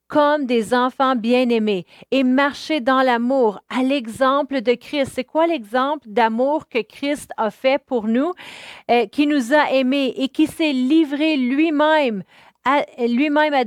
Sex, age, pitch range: female, 40-59, 250-295 Hz